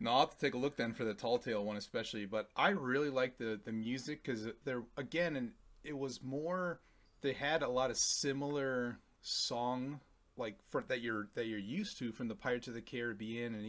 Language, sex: English, male